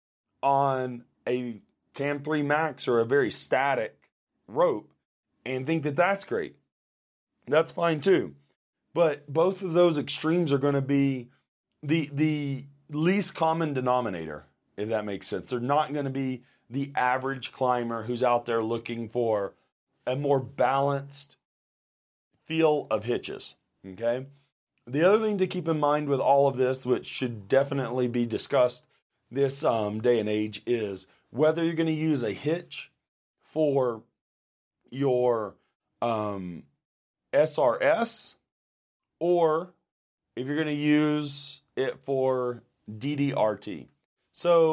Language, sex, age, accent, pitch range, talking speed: English, male, 30-49, American, 125-160 Hz, 135 wpm